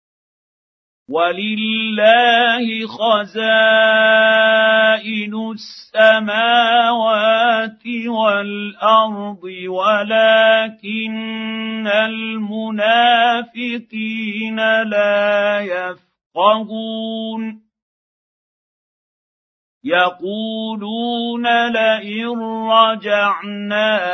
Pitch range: 205-225 Hz